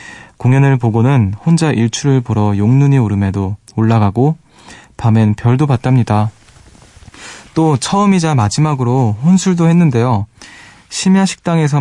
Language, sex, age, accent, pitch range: Korean, male, 20-39, native, 105-135 Hz